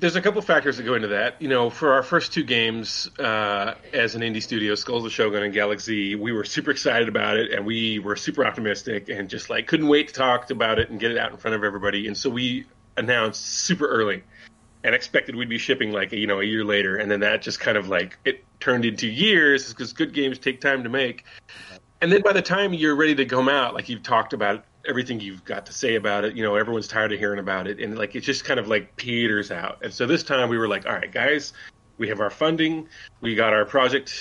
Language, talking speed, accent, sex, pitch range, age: English, 255 wpm, American, male, 105-130 Hz, 30-49